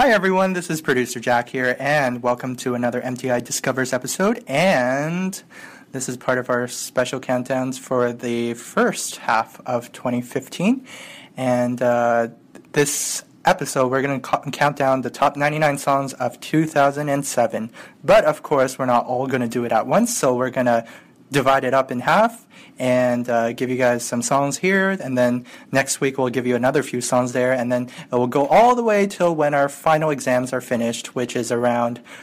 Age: 20-39